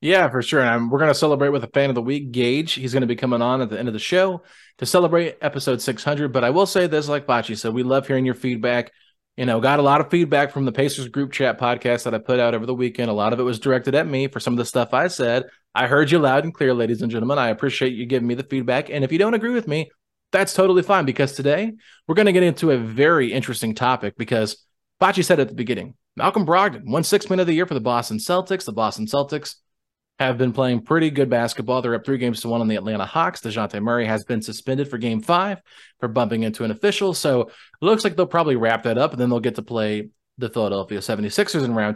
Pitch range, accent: 120-155 Hz, American